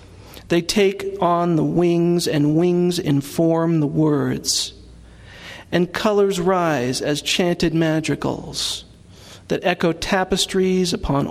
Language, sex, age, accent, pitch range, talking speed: English, male, 40-59, American, 145-175 Hz, 105 wpm